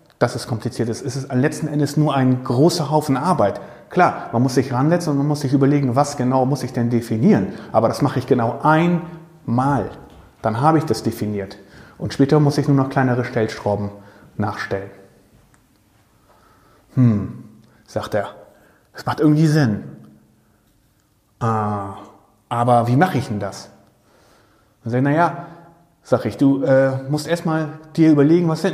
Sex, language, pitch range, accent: male, German, 110-155 Hz, German